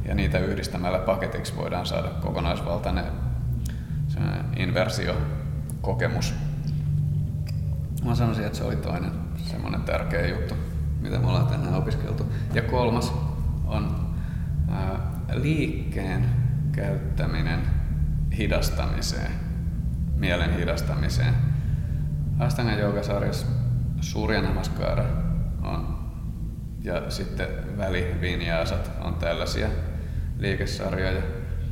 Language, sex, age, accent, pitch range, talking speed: Finnish, male, 30-49, native, 80-100 Hz, 80 wpm